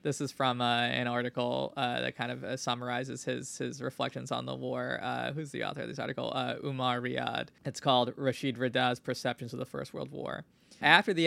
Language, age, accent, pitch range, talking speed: English, 20-39, American, 125-150 Hz, 215 wpm